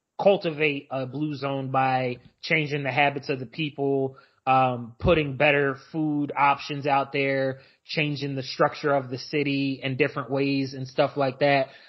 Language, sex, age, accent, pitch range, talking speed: English, male, 20-39, American, 135-170 Hz, 155 wpm